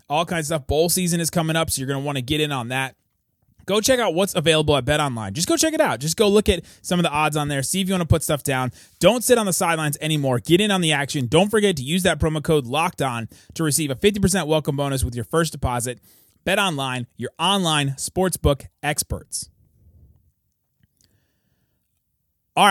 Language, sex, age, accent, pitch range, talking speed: English, male, 30-49, American, 140-185 Hz, 225 wpm